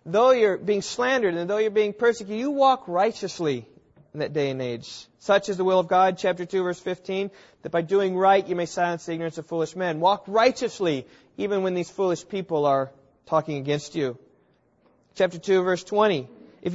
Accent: American